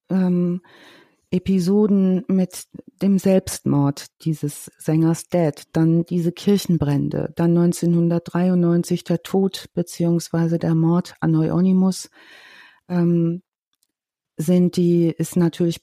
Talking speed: 95 wpm